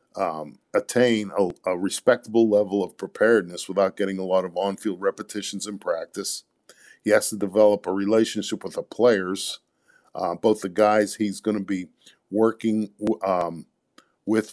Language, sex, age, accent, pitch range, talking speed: English, male, 50-69, American, 100-115 Hz, 155 wpm